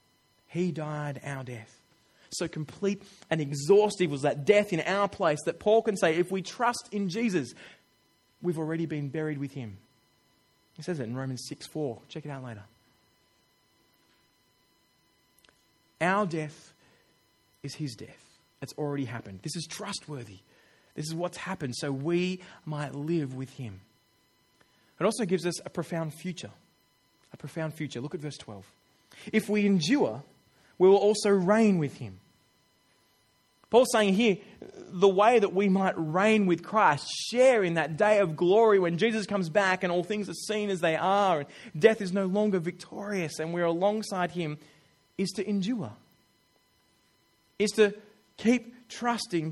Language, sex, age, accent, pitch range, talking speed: English, male, 20-39, Australian, 150-205 Hz, 160 wpm